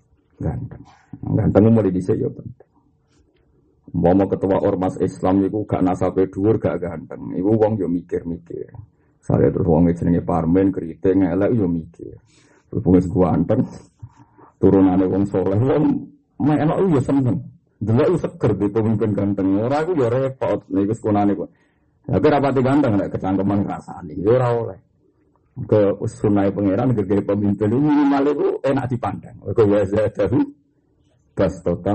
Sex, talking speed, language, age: male, 95 wpm, Indonesian, 50-69